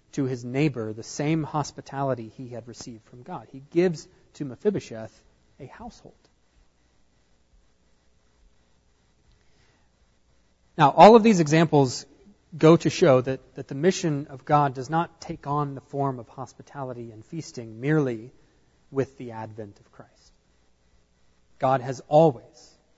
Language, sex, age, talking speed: English, male, 30-49, 130 wpm